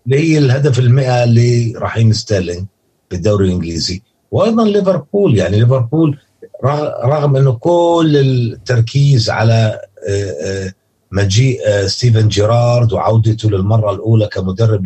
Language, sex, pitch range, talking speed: Arabic, male, 110-140 Hz, 95 wpm